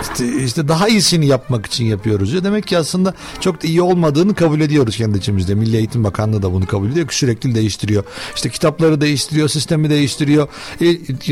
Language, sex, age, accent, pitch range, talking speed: Turkish, male, 60-79, native, 115-155 Hz, 170 wpm